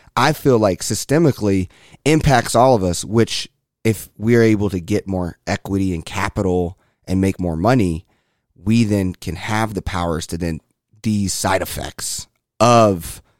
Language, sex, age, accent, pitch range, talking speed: English, male, 30-49, American, 90-120 Hz, 155 wpm